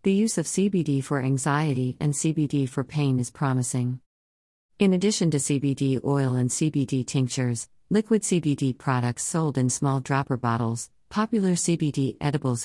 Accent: American